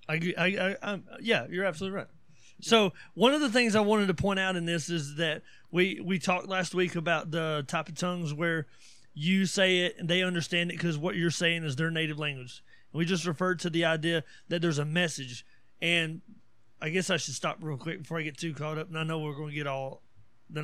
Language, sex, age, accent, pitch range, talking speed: English, male, 30-49, American, 150-185 Hz, 240 wpm